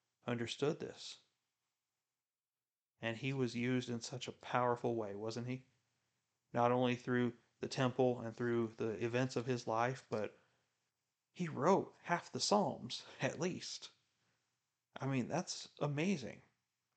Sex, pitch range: male, 115-135 Hz